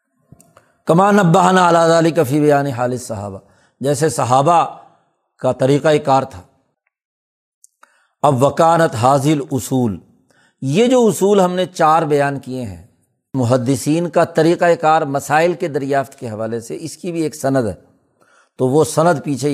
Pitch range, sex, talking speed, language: 125-165 Hz, male, 140 wpm, Urdu